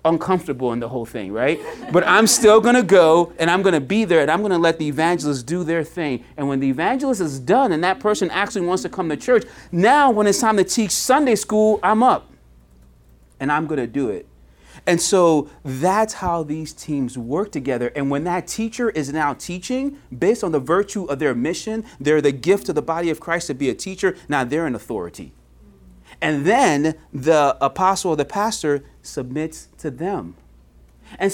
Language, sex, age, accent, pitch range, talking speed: English, male, 30-49, American, 135-205 Hz, 205 wpm